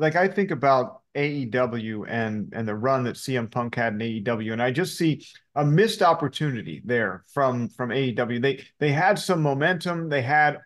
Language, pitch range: English, 125-160 Hz